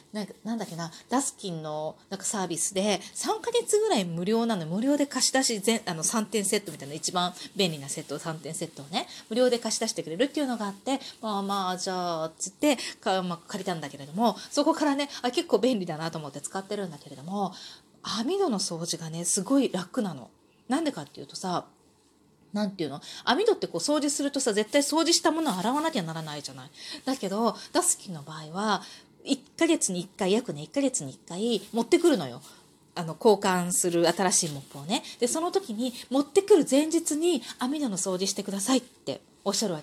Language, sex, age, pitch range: Japanese, female, 30-49, 180-270 Hz